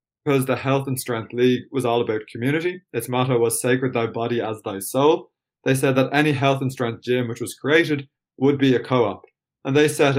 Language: English